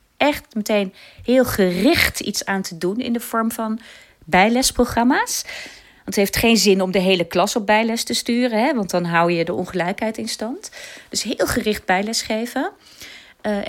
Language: Dutch